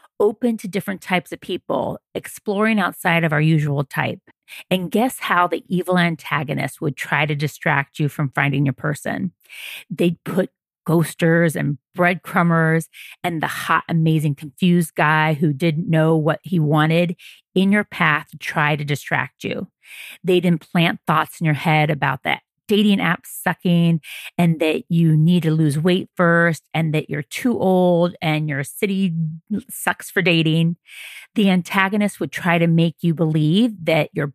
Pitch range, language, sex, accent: 155-185 Hz, English, female, American